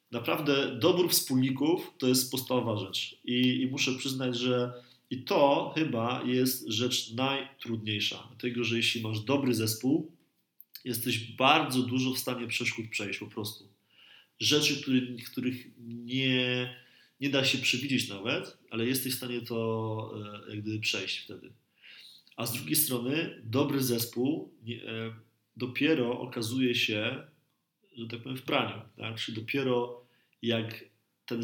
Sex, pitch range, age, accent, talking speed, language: male, 110-130 Hz, 30-49, native, 135 wpm, Polish